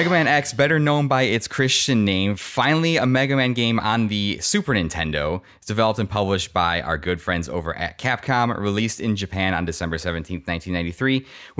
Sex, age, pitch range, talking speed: male, 20-39, 90-130 Hz, 185 wpm